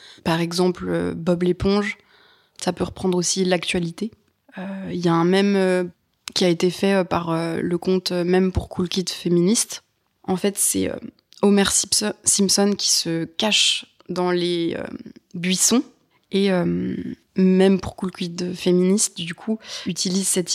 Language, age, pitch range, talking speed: French, 20-39, 180-200 Hz, 160 wpm